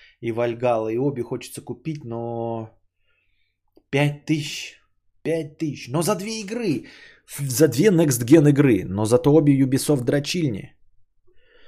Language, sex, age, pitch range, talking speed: Bulgarian, male, 20-39, 105-160 Hz, 115 wpm